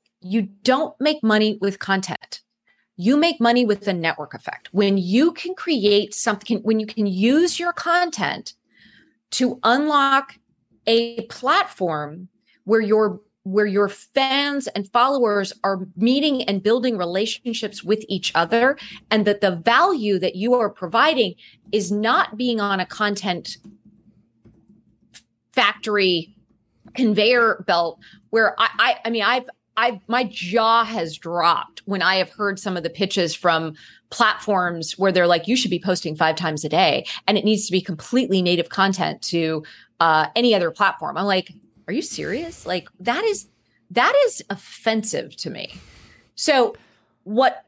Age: 30-49